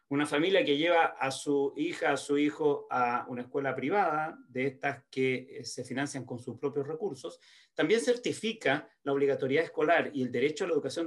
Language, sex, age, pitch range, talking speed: Spanish, male, 40-59, 140-210 Hz, 190 wpm